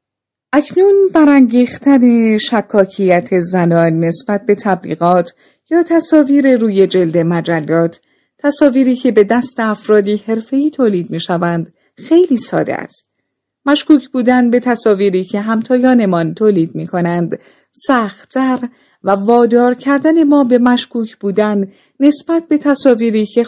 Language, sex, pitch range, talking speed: Persian, female, 190-260 Hz, 115 wpm